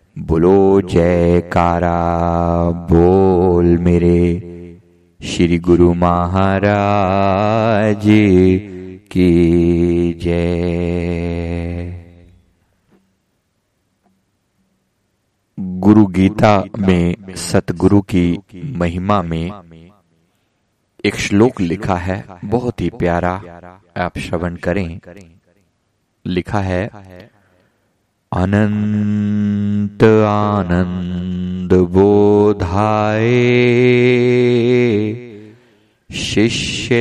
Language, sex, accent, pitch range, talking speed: Hindi, male, native, 90-105 Hz, 55 wpm